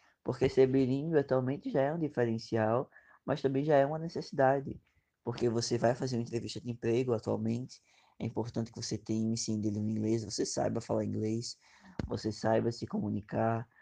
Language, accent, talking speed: Portuguese, Brazilian, 180 wpm